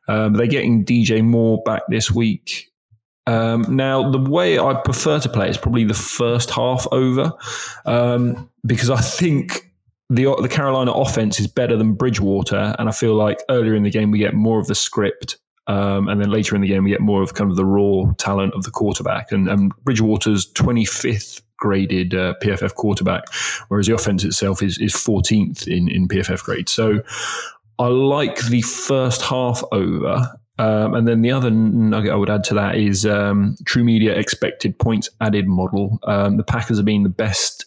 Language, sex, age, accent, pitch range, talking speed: English, male, 20-39, British, 100-120 Hz, 190 wpm